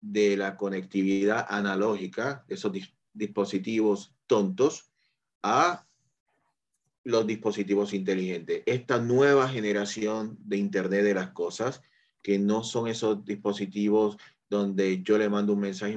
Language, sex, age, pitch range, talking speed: Spanish, male, 30-49, 100-120 Hz, 115 wpm